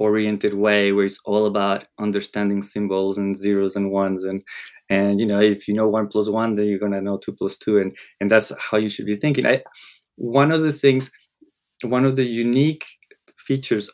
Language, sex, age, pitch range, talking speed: English, male, 20-39, 105-135 Hz, 200 wpm